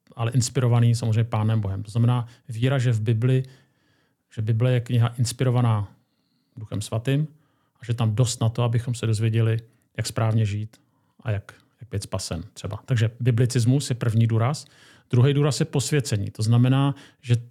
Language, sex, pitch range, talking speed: Czech, male, 115-135 Hz, 165 wpm